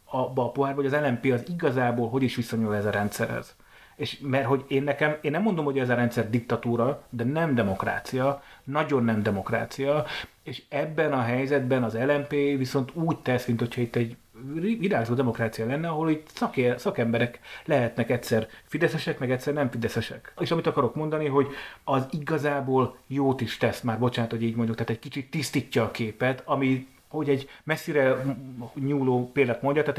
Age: 30-49